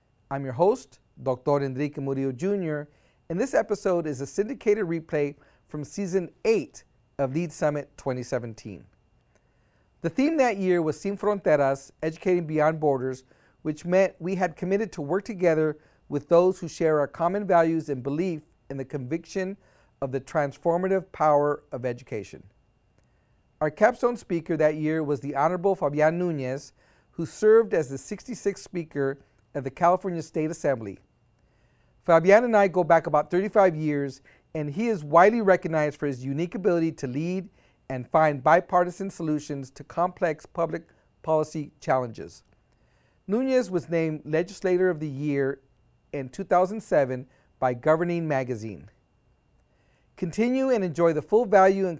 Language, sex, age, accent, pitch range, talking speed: English, male, 40-59, American, 140-185 Hz, 145 wpm